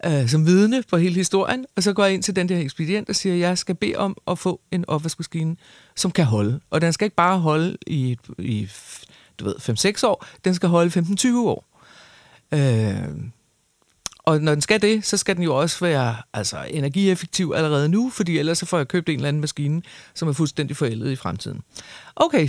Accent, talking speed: native, 210 wpm